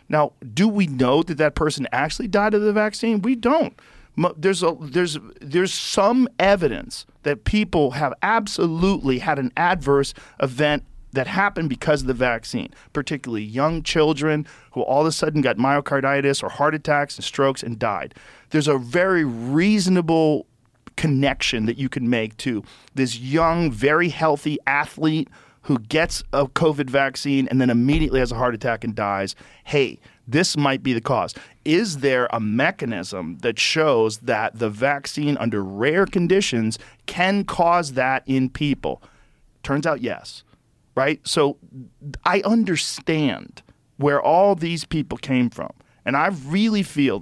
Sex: male